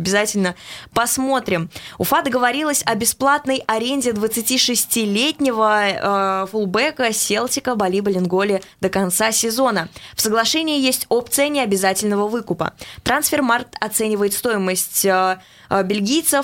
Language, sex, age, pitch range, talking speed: Russian, female, 20-39, 190-240 Hz, 100 wpm